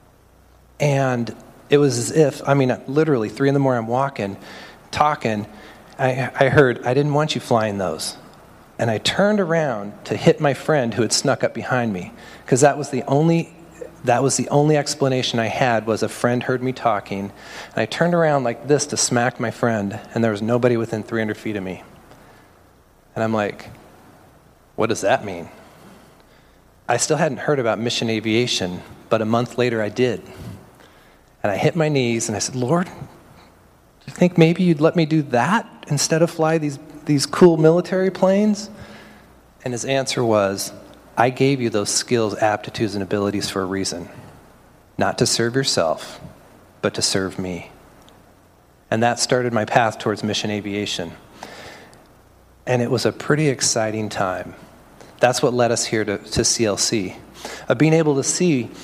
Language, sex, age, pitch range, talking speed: English, male, 40-59, 110-145 Hz, 170 wpm